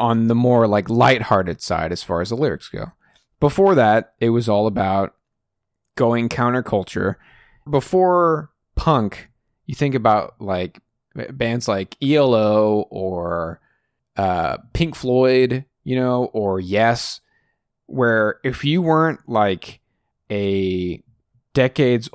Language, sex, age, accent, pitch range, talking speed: English, male, 20-39, American, 100-130 Hz, 120 wpm